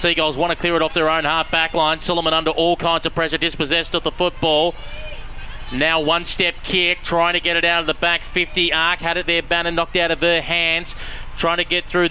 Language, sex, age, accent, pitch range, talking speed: English, male, 30-49, Australian, 155-175 Hz, 240 wpm